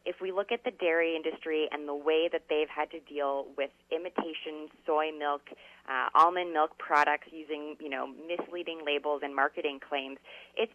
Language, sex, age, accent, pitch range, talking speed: English, female, 20-39, American, 150-185 Hz, 180 wpm